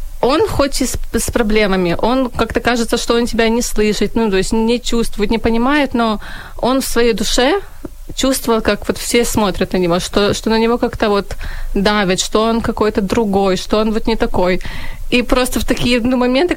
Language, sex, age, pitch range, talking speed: Ukrainian, female, 20-39, 210-245 Hz, 195 wpm